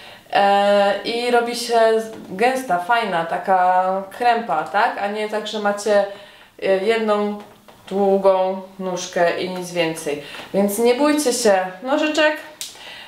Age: 20-39